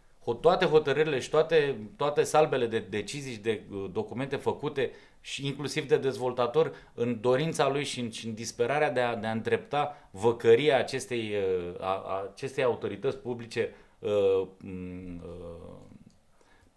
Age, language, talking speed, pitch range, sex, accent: 30-49, Romanian, 135 wpm, 105-145 Hz, male, native